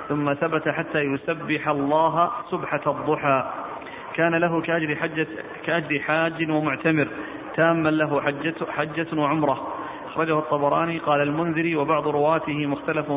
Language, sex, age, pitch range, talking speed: Arabic, male, 40-59, 145-165 Hz, 120 wpm